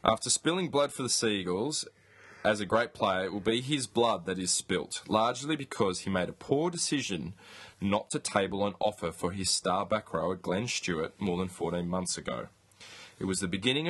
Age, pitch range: 20-39, 90-115 Hz